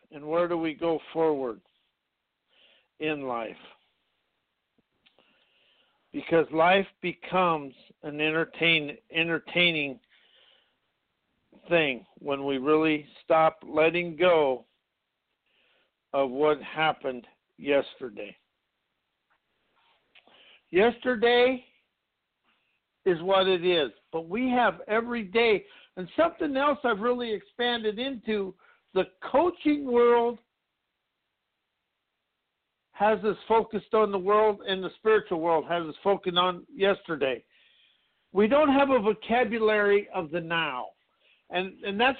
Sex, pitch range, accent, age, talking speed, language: male, 165-235 Hz, American, 60-79, 100 wpm, English